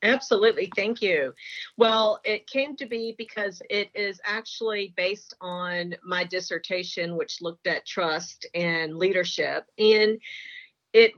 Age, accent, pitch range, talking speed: 40-59, American, 175-215 Hz, 130 wpm